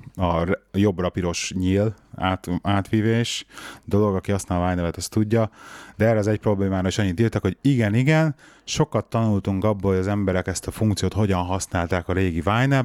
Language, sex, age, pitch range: Hungarian, male, 30-49, 90-115 Hz